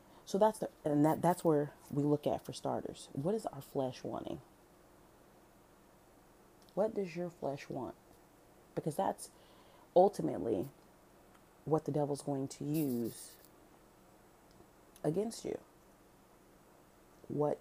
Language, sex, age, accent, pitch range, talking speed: English, female, 30-49, American, 145-175 Hz, 115 wpm